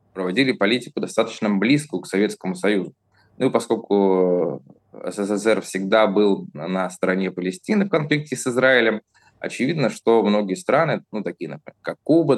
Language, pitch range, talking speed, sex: Russian, 100-120 Hz, 140 wpm, male